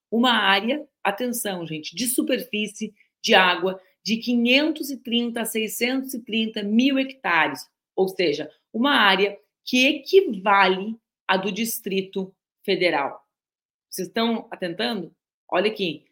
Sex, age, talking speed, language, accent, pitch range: female, 40-59, 110 wpm, Portuguese, Brazilian, 190-240 Hz